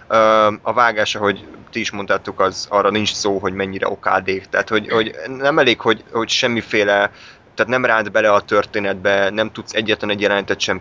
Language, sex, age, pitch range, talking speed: Hungarian, male, 20-39, 100-115 Hz, 185 wpm